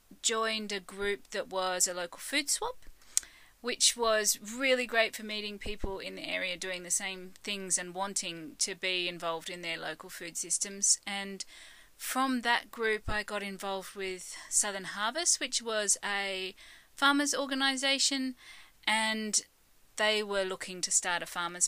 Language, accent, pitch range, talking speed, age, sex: English, Australian, 180-225 Hz, 155 wpm, 30-49, female